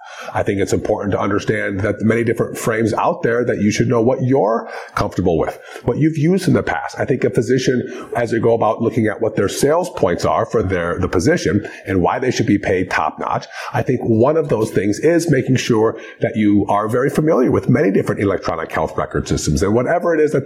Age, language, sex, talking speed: 40-59, English, male, 240 wpm